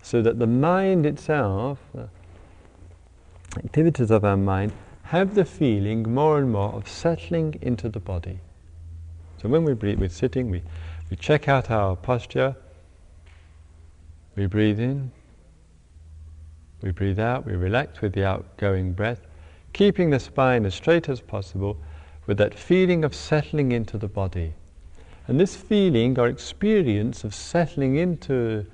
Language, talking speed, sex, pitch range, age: English, 140 wpm, male, 90-125 Hz, 50-69